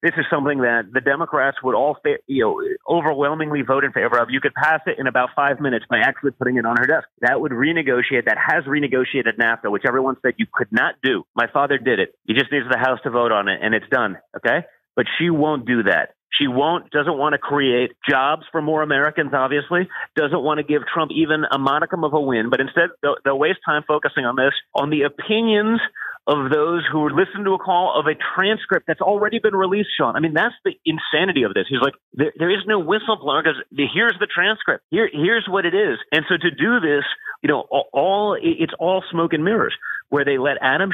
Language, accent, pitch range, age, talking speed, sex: English, American, 140-185 Hz, 30-49, 230 wpm, male